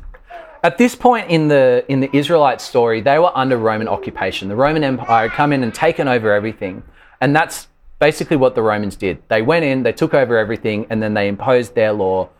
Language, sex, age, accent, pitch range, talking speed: English, male, 30-49, Australian, 115-165 Hz, 215 wpm